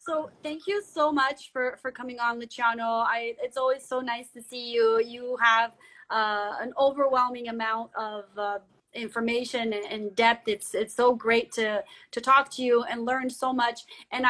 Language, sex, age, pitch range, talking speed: English, female, 30-49, 220-255 Hz, 170 wpm